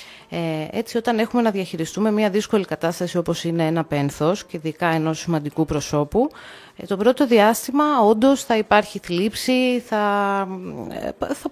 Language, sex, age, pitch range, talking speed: Greek, female, 30-49, 165-225 Hz, 135 wpm